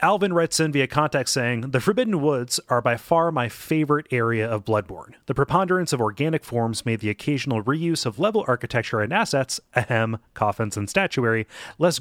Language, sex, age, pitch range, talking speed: English, male, 30-49, 120-170 Hz, 180 wpm